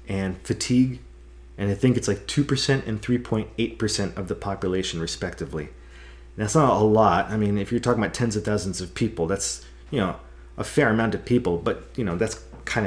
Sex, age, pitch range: male, 30-49, 90-110 Hz